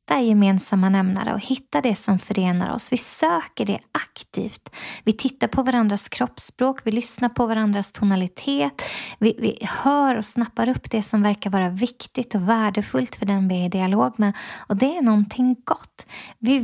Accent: native